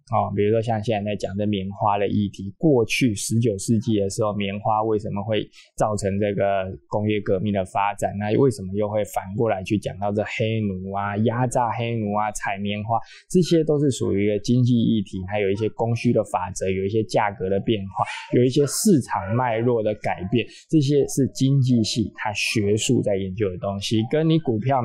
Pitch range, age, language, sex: 105-130 Hz, 20-39, Chinese, male